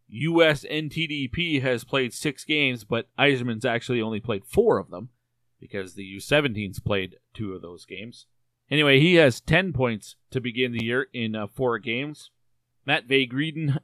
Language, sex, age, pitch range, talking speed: English, male, 40-59, 115-145 Hz, 160 wpm